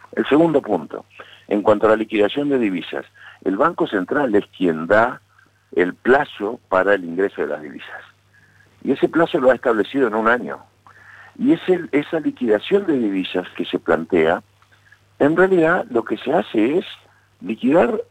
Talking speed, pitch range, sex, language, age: 160 wpm, 95-160 Hz, male, Spanish, 60-79